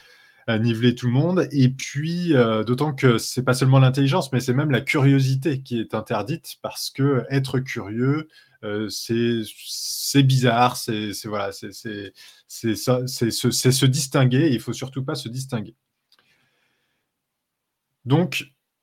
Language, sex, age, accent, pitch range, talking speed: French, male, 20-39, French, 115-140 Hz, 165 wpm